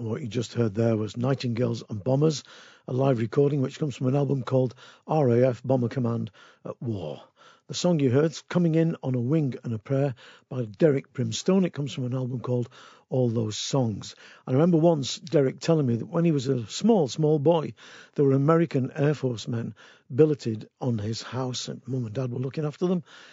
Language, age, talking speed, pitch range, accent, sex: English, 50-69, 205 wpm, 120-155 Hz, British, male